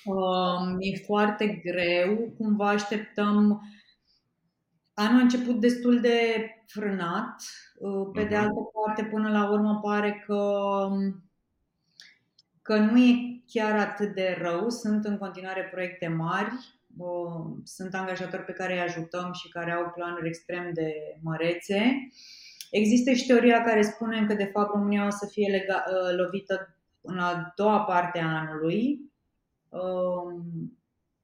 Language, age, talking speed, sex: Romanian, 30-49, 130 wpm, female